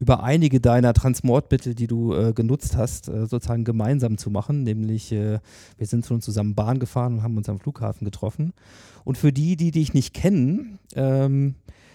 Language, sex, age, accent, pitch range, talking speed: German, male, 40-59, German, 115-145 Hz, 185 wpm